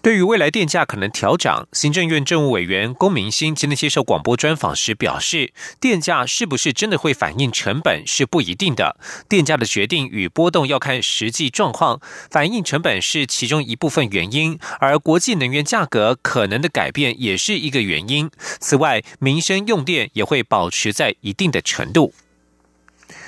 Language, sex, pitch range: German, male, 130-180 Hz